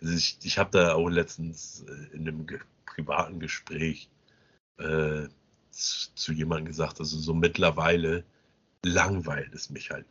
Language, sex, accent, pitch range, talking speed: German, male, German, 80-100 Hz, 130 wpm